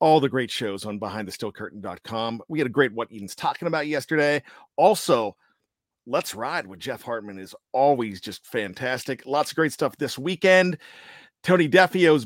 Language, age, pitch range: English, 40-59, 135-185 Hz